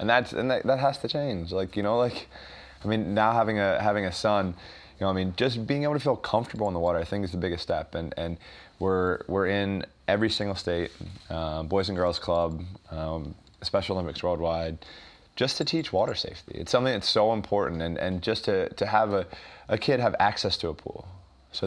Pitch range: 85-105 Hz